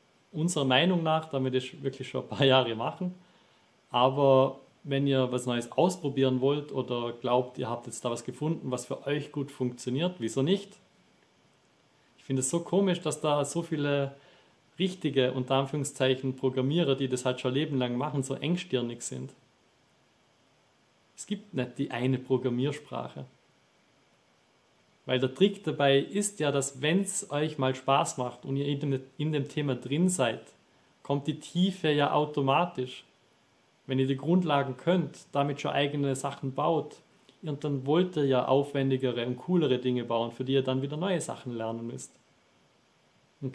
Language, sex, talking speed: German, male, 165 wpm